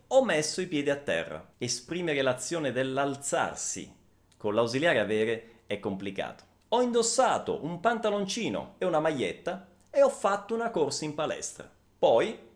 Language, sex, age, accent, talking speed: Italian, male, 30-49, native, 140 wpm